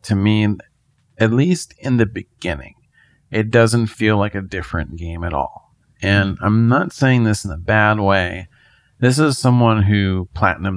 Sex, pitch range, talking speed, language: male, 100-120 Hz, 165 wpm, English